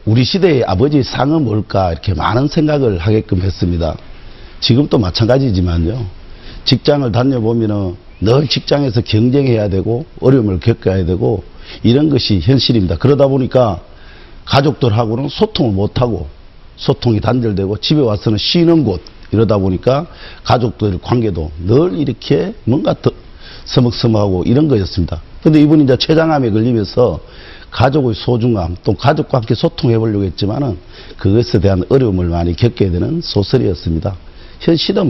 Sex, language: male, Korean